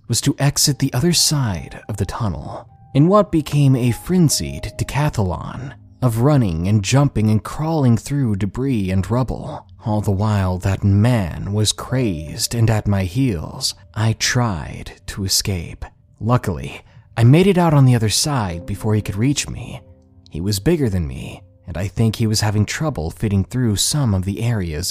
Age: 30-49